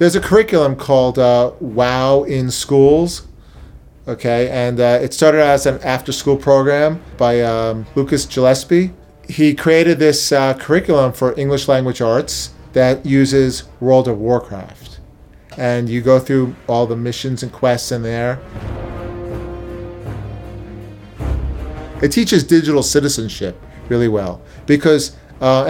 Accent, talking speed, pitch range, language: American, 125 wpm, 120-150 Hz, English